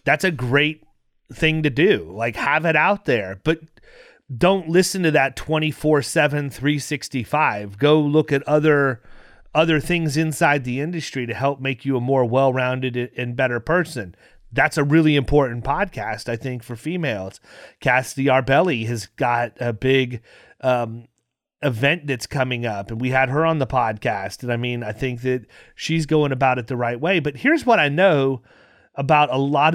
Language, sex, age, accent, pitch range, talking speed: English, male, 30-49, American, 125-160 Hz, 170 wpm